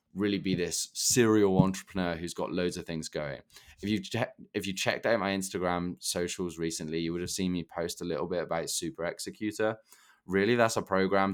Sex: male